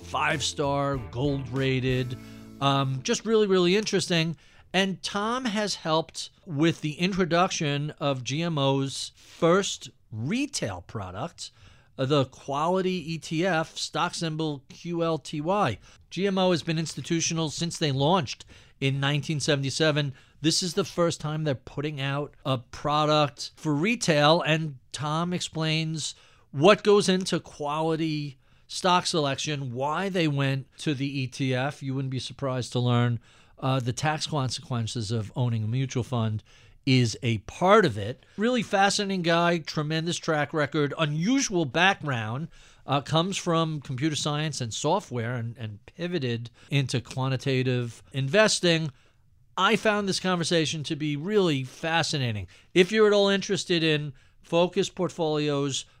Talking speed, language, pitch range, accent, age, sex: 125 wpm, English, 130-170 Hz, American, 50-69, male